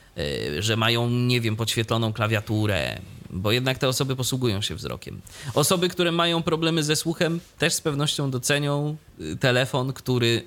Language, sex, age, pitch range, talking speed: Polish, male, 30-49, 110-150 Hz, 145 wpm